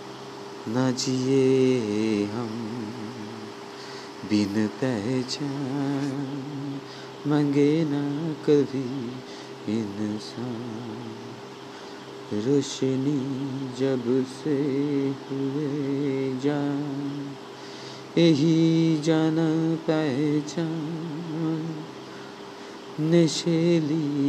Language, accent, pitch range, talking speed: Bengali, native, 110-145 Hz, 35 wpm